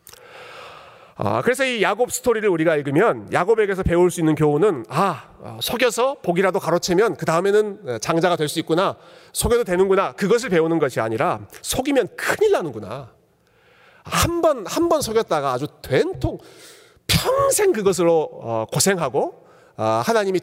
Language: Korean